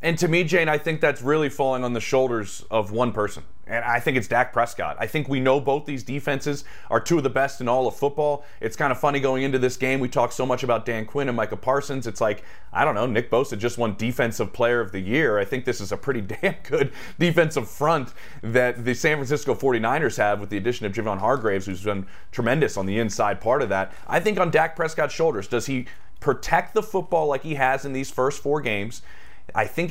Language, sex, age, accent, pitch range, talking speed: English, male, 30-49, American, 115-150 Hz, 245 wpm